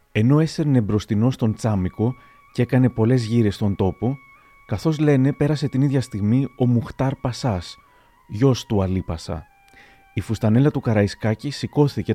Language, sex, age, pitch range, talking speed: Greek, male, 30-49, 105-145 Hz, 140 wpm